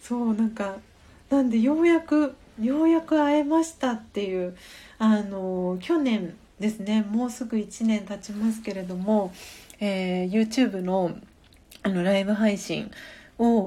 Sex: female